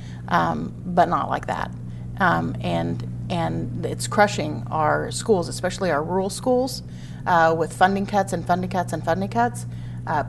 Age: 40-59